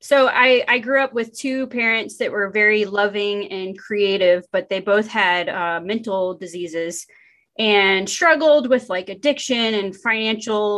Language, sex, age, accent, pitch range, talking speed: English, female, 20-39, American, 200-250 Hz, 155 wpm